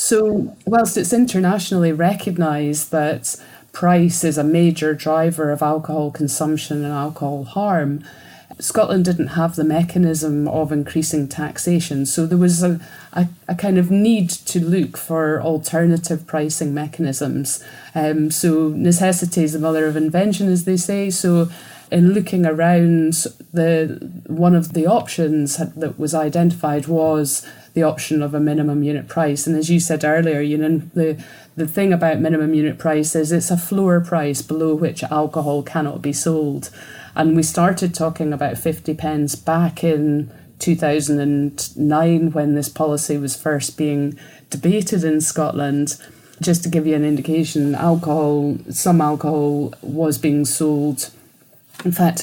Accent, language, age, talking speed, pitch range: British, English, 30-49, 150 wpm, 150-170 Hz